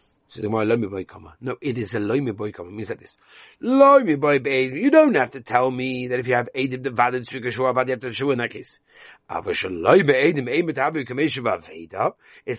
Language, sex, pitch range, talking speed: English, male, 120-175 Hz, 185 wpm